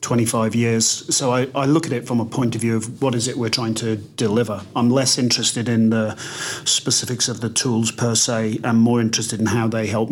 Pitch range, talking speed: 115-140 Hz, 230 wpm